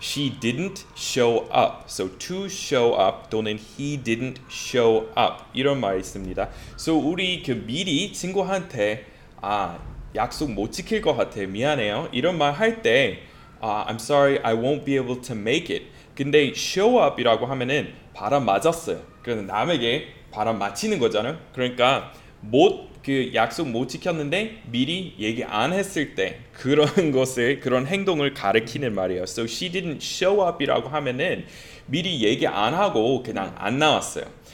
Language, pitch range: Korean, 115-170 Hz